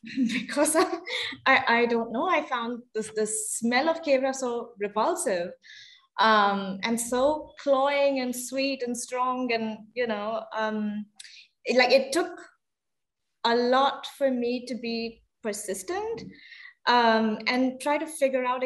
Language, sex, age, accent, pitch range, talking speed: English, female, 20-39, Indian, 230-300 Hz, 145 wpm